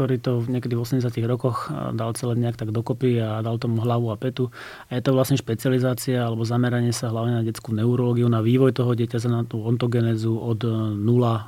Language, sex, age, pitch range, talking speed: Slovak, male, 30-49, 115-130 Hz, 200 wpm